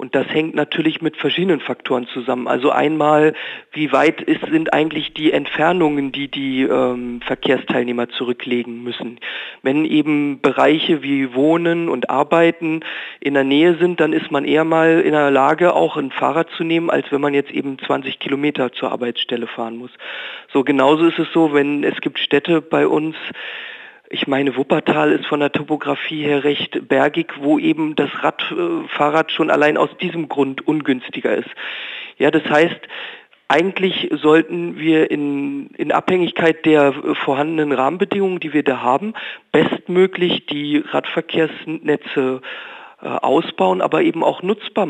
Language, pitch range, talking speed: German, 140-170 Hz, 155 wpm